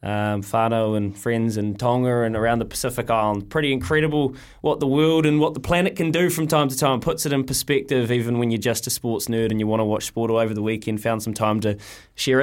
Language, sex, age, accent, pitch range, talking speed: English, male, 20-39, Australian, 110-150 Hz, 250 wpm